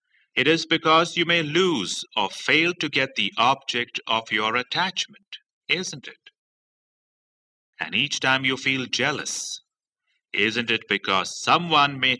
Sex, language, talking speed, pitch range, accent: male, English, 140 wpm, 130-170 Hz, Indian